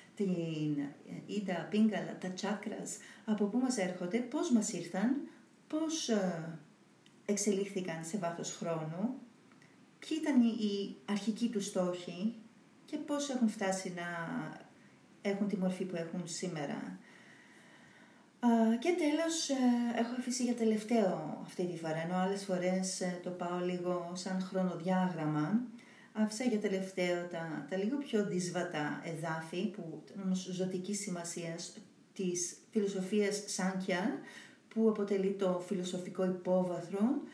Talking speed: 100 wpm